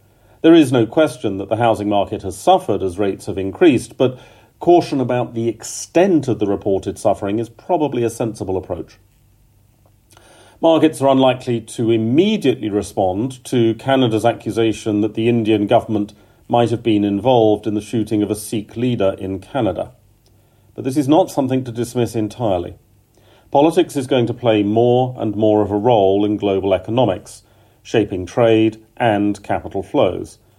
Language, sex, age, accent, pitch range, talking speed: English, male, 40-59, British, 105-120 Hz, 160 wpm